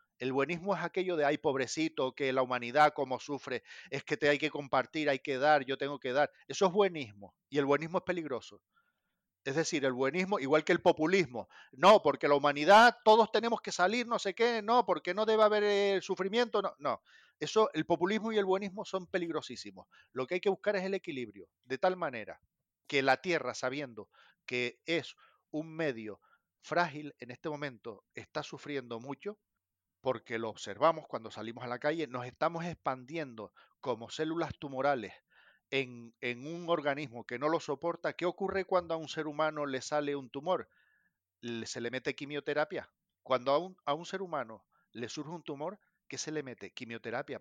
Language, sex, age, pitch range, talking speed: Spanish, male, 40-59, 130-180 Hz, 185 wpm